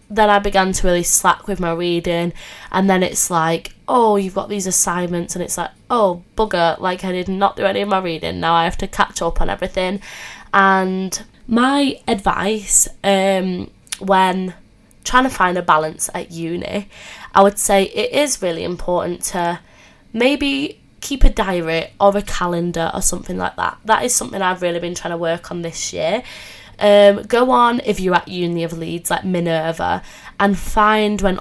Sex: female